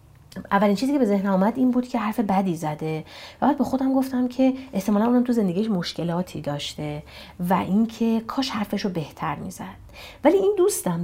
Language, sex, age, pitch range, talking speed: Persian, female, 30-49, 165-230 Hz, 180 wpm